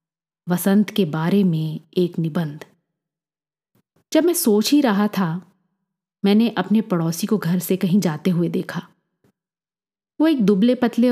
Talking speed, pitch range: 140 wpm, 170-220 Hz